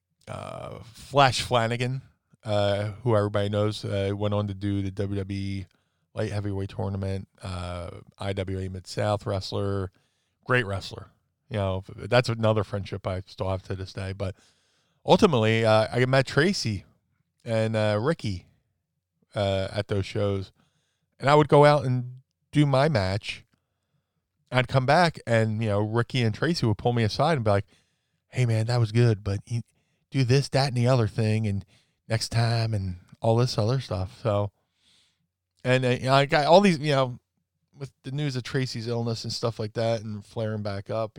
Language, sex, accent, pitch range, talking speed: English, male, American, 100-130 Hz, 170 wpm